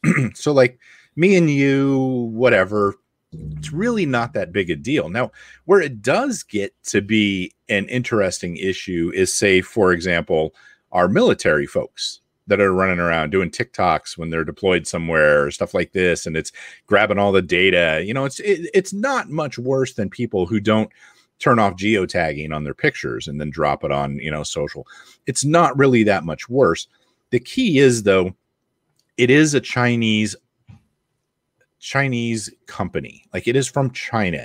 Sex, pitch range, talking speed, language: male, 90-135 Hz, 165 wpm, English